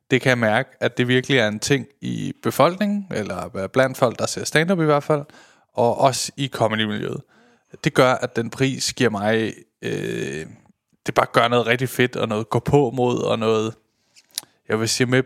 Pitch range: 115-140 Hz